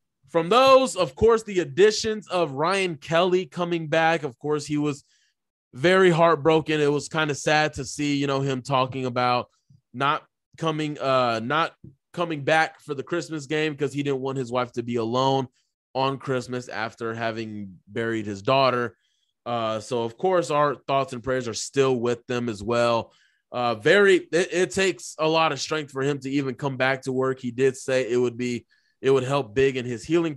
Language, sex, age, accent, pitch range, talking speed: English, male, 20-39, American, 130-185 Hz, 195 wpm